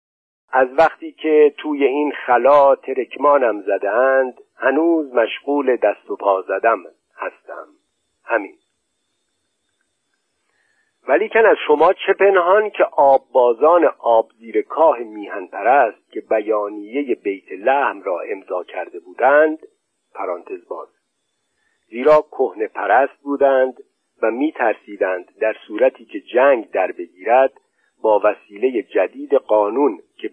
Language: Persian